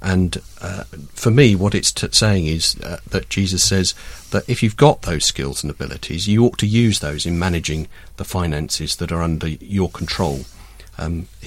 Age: 40-59